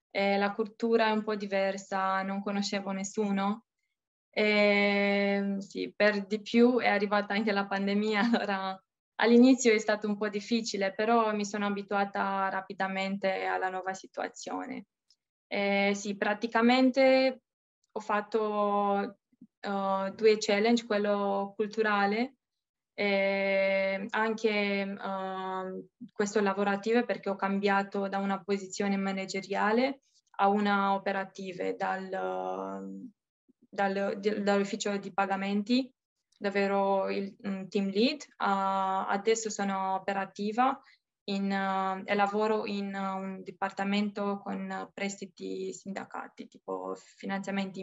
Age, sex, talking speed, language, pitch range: 20-39, female, 105 wpm, Italian, 195-215 Hz